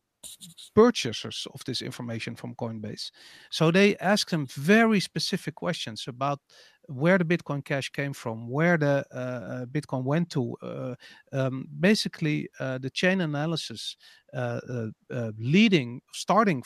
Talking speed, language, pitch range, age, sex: 135 wpm, English, 130-185 Hz, 50-69, male